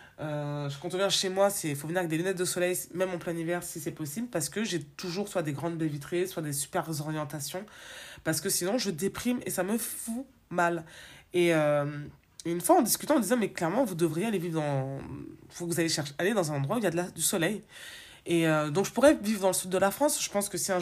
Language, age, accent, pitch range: French, 20-39, French, 155-200 Hz